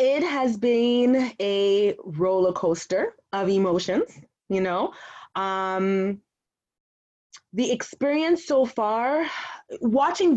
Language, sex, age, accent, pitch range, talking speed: English, female, 20-39, American, 195-245 Hz, 95 wpm